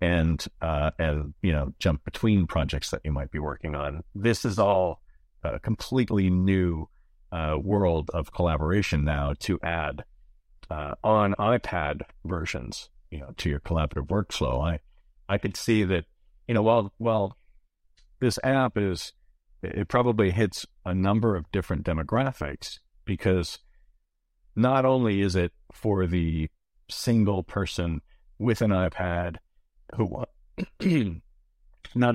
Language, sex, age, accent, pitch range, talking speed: English, male, 50-69, American, 80-105 Hz, 135 wpm